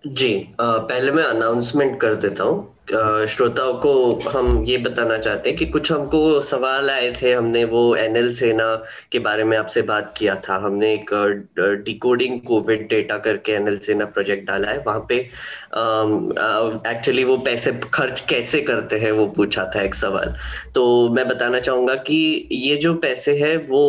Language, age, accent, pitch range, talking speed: Hindi, 10-29, native, 110-135 Hz, 160 wpm